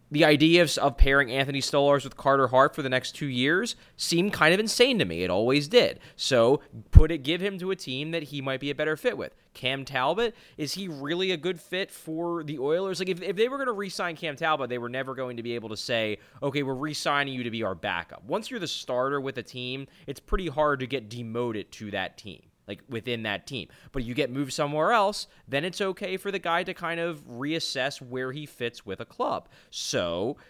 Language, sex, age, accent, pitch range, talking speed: English, male, 20-39, American, 100-165 Hz, 235 wpm